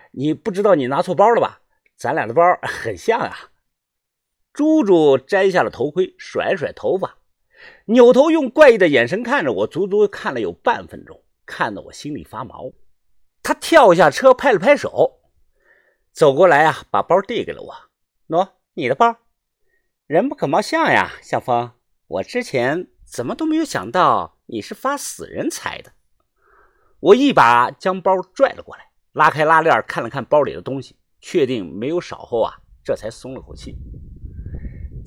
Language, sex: Chinese, male